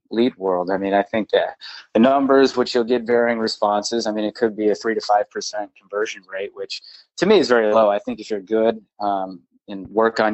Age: 20-39